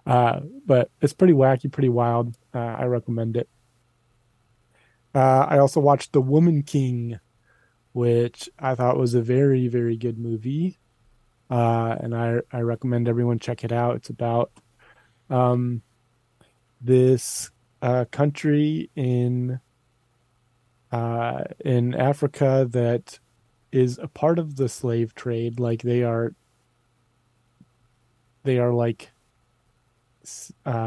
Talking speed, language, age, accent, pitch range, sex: 120 wpm, English, 20-39, American, 115-130 Hz, male